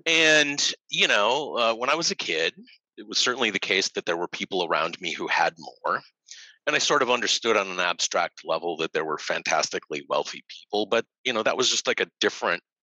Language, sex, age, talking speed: English, male, 30-49, 220 wpm